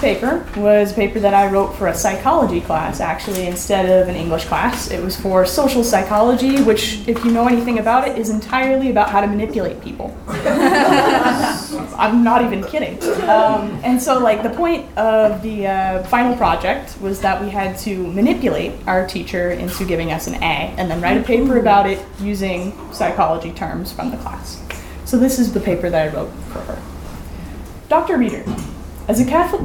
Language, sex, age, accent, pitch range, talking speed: English, female, 20-39, American, 190-250 Hz, 185 wpm